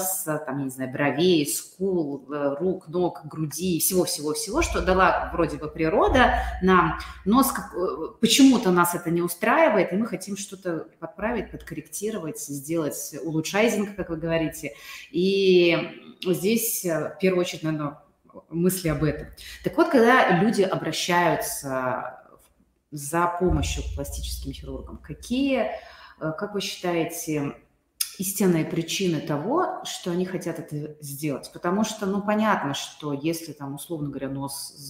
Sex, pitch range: female, 150-190 Hz